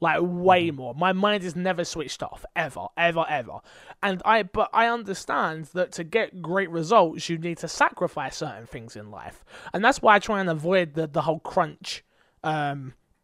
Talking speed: 190 wpm